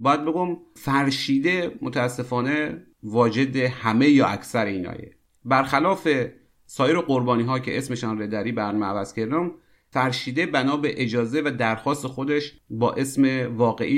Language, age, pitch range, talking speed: Persian, 40-59, 115-150 Hz, 115 wpm